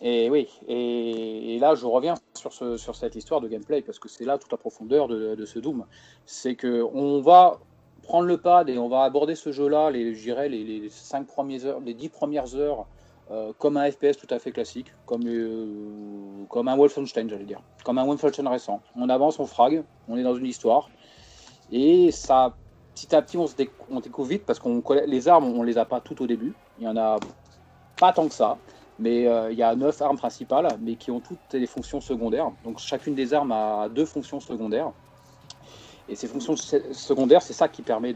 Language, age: French, 30-49